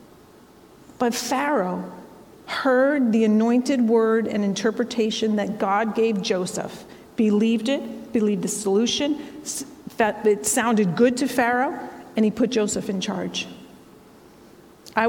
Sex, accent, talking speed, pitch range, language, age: female, American, 120 wpm, 205-245 Hz, English, 40-59